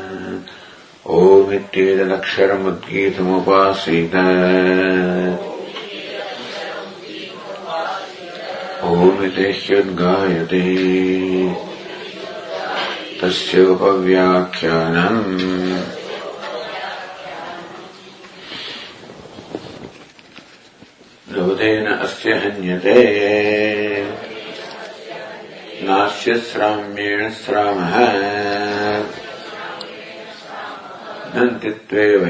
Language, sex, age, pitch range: English, male, 50-69, 95-105 Hz